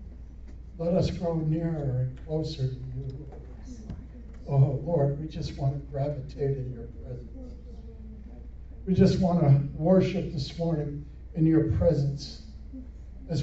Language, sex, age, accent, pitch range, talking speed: English, male, 60-79, American, 130-165 Hz, 135 wpm